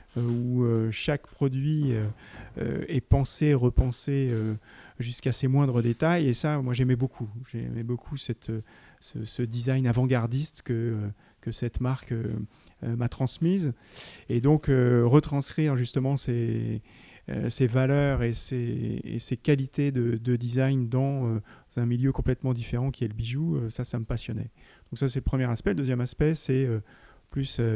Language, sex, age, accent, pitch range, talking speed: French, male, 30-49, French, 115-135 Hz, 145 wpm